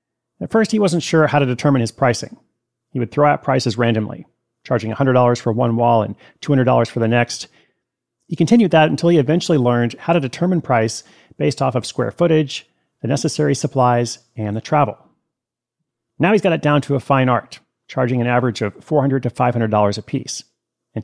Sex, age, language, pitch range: male, 40-59, English, 120-150 Hz